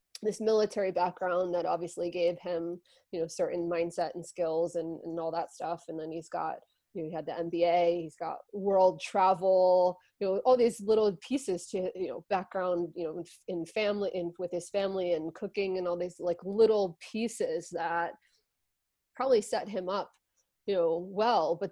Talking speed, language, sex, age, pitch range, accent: 185 wpm, English, female, 20-39, 165-190 Hz, American